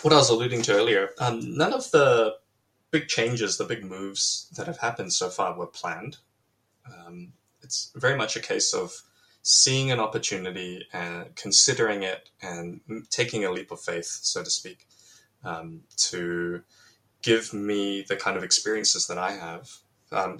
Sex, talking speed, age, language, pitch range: male, 165 wpm, 10-29, English, 90-135 Hz